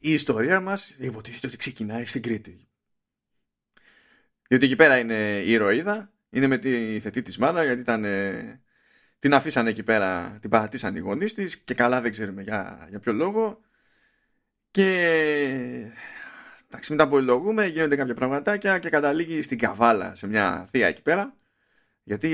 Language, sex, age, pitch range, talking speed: Greek, male, 20-39, 110-155 Hz, 155 wpm